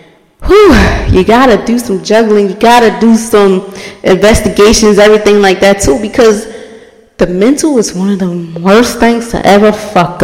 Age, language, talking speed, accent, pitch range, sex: 20-39, English, 170 wpm, American, 195-280 Hz, female